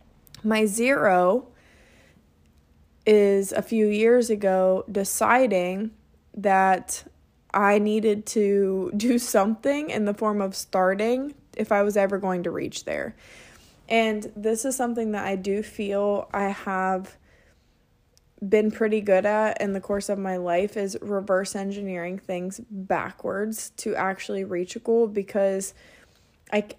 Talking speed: 130 wpm